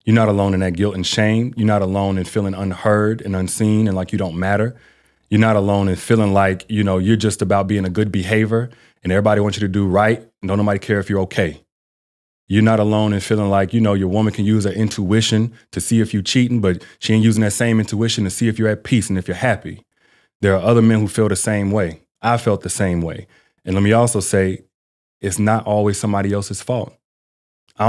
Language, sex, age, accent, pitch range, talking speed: English, male, 30-49, American, 95-110 Hz, 240 wpm